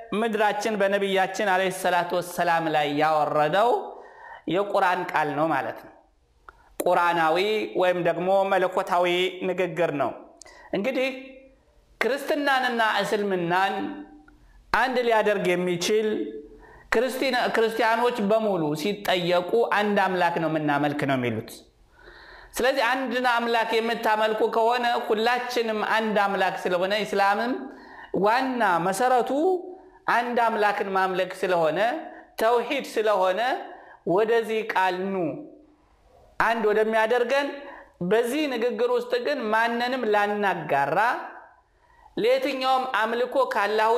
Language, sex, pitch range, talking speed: Amharic, male, 185-250 Hz, 85 wpm